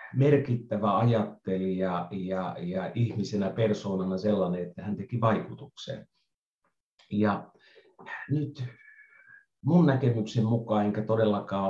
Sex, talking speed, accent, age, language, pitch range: male, 90 wpm, native, 50-69, Finnish, 100-130 Hz